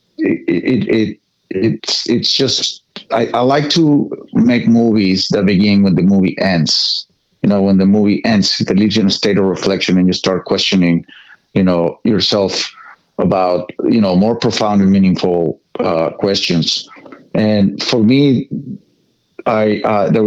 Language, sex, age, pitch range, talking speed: English, male, 50-69, 90-115 Hz, 160 wpm